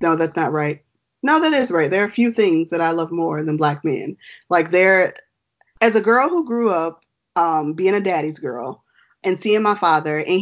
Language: English